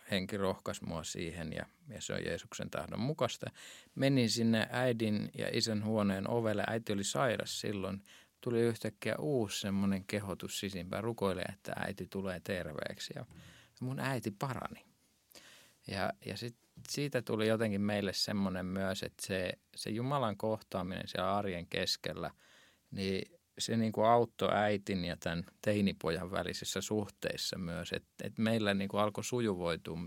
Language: Finnish